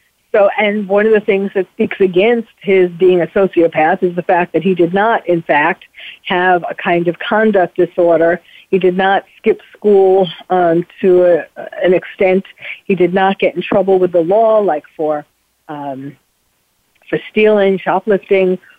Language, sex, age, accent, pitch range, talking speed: English, female, 50-69, American, 180-215 Hz, 170 wpm